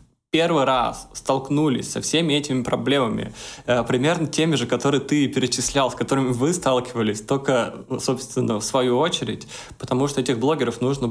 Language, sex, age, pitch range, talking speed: Russian, male, 20-39, 120-135 Hz, 145 wpm